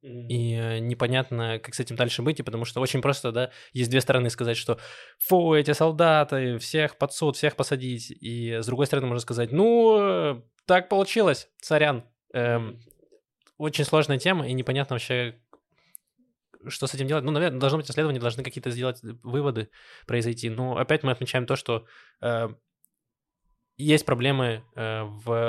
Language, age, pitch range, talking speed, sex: Russian, 20-39, 115-135 Hz, 155 wpm, male